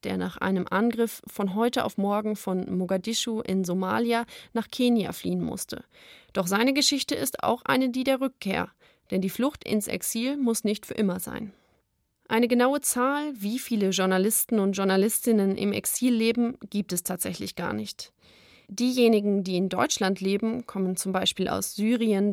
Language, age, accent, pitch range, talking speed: German, 30-49, German, 190-230 Hz, 165 wpm